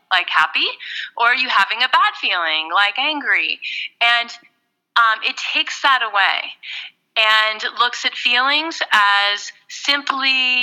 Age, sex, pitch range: 30-49, female, 210-285 Hz